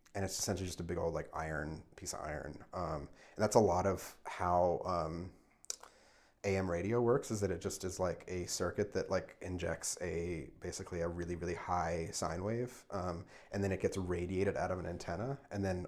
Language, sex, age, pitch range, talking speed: English, male, 30-49, 85-100 Hz, 205 wpm